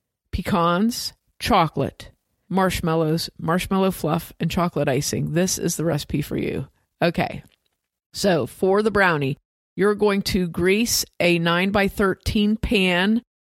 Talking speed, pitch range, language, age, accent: 115 wpm, 175-225 Hz, English, 50-69, American